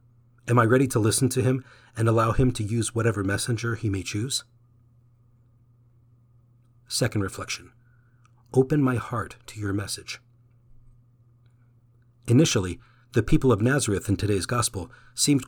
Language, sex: English, male